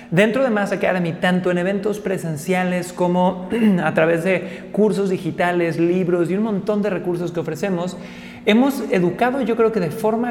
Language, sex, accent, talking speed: Spanish, male, Mexican, 170 wpm